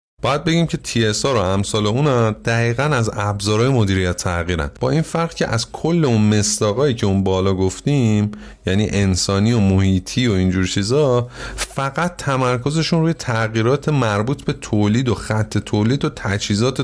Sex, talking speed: male, 155 wpm